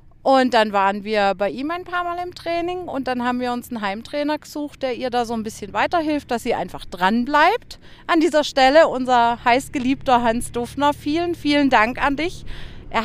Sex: female